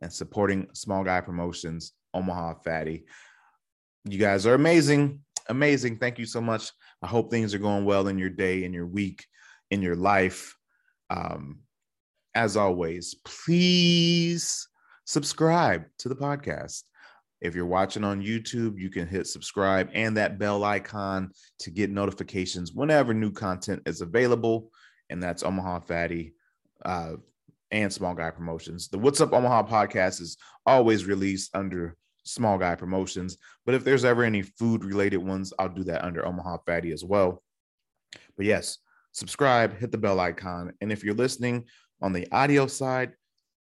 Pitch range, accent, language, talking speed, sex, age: 90-115 Hz, American, English, 150 wpm, male, 30-49